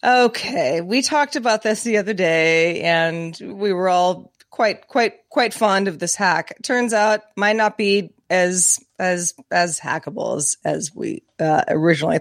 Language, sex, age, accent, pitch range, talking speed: English, female, 30-49, American, 200-260 Hz, 165 wpm